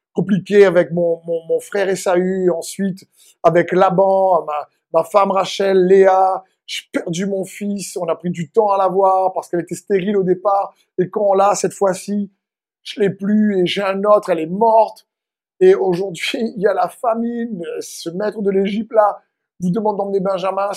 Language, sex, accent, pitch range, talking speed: French, male, French, 180-220 Hz, 185 wpm